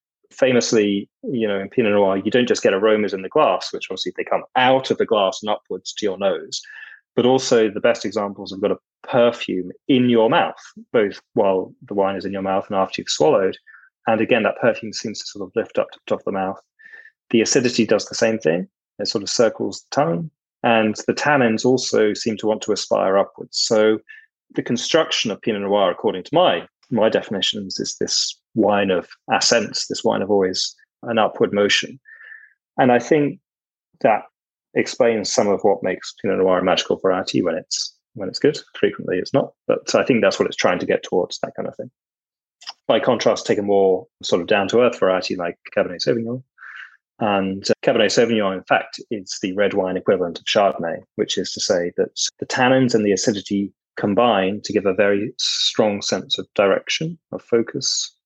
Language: English